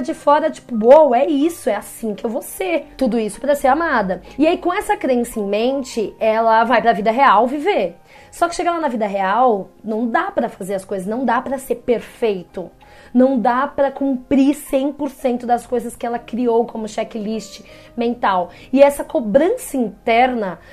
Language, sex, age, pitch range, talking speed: Portuguese, female, 20-39, 215-280 Hz, 185 wpm